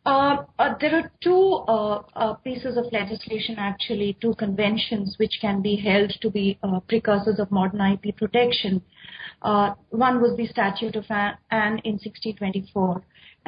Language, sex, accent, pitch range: English, female, Indian, 200-230 Hz